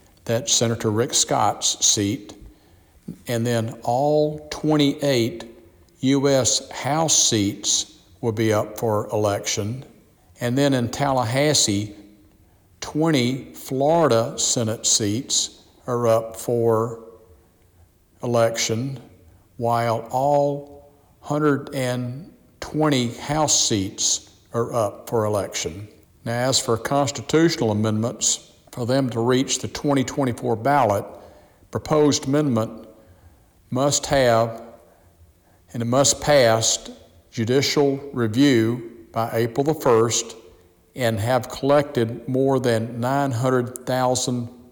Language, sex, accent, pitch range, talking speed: English, male, American, 110-135 Hz, 95 wpm